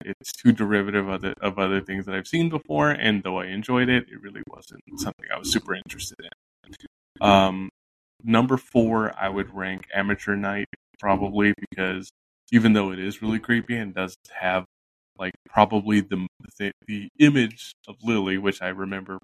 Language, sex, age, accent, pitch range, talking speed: English, male, 20-39, American, 95-110 Hz, 165 wpm